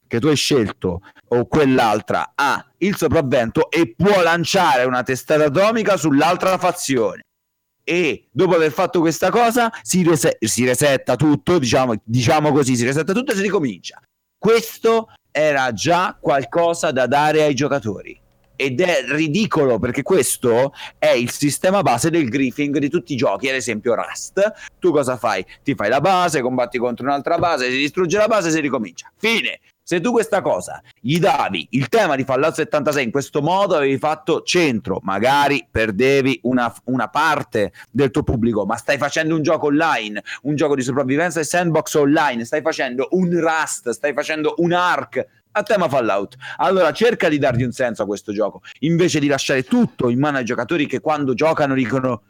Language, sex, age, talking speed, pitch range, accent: Italian, male, 30-49, 175 wpm, 130-175 Hz, native